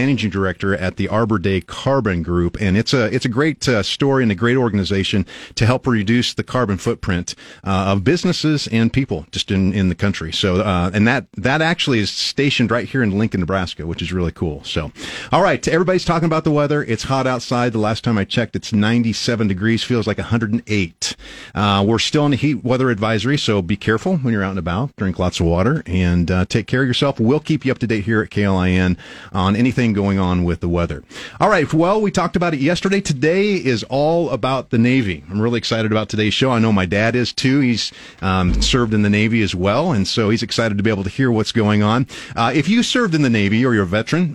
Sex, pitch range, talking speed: male, 100-130 Hz, 235 wpm